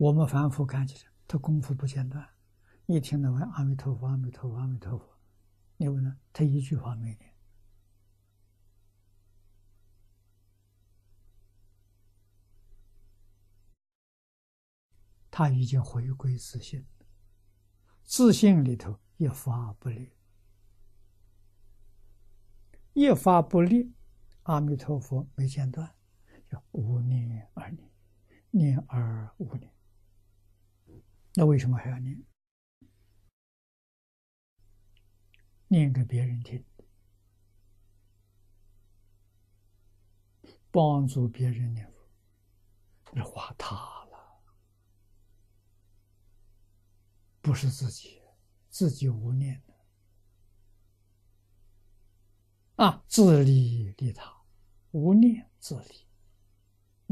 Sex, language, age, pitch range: male, Chinese, 60-79, 100-130 Hz